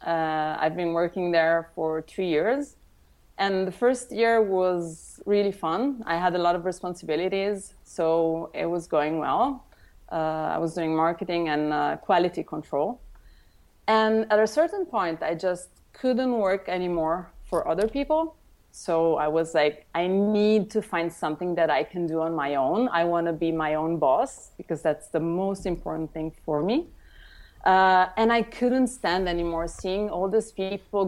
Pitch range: 165-205 Hz